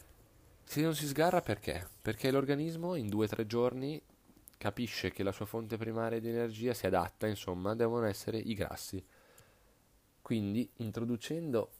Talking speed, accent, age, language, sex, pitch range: 140 wpm, native, 30-49, Italian, male, 95-115 Hz